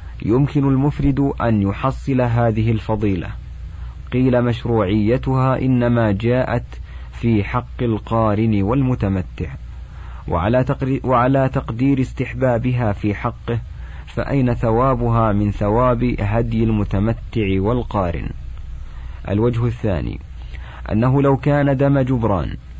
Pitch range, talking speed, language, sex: 100-130 Hz, 90 wpm, Arabic, male